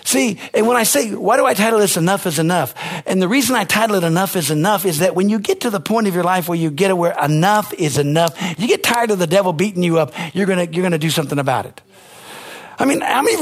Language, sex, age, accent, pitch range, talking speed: English, male, 50-69, American, 165-230 Hz, 280 wpm